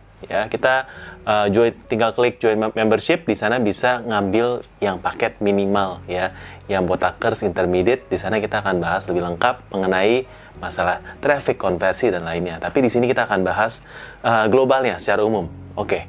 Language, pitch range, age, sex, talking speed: Indonesian, 95-115 Hz, 30-49, male, 160 wpm